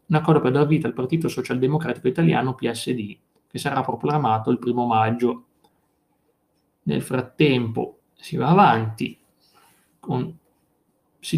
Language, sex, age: Italian, male, 30-49